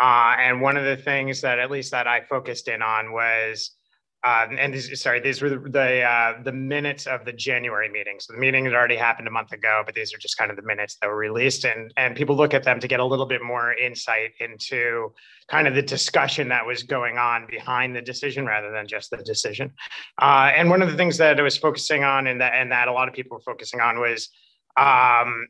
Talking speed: 245 wpm